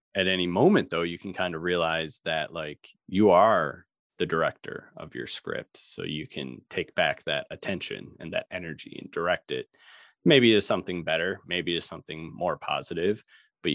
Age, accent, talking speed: 30-49, American, 180 wpm